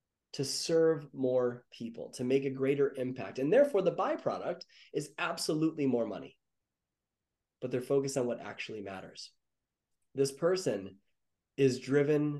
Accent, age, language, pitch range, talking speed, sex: American, 20-39, English, 125-160 Hz, 135 wpm, male